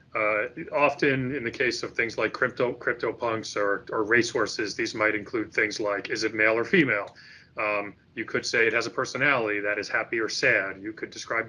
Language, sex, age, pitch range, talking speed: English, male, 30-49, 105-125 Hz, 205 wpm